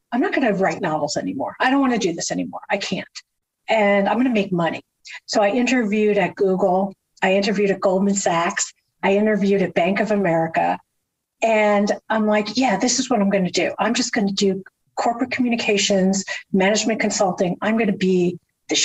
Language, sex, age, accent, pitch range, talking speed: English, female, 50-69, American, 195-240 Hz, 200 wpm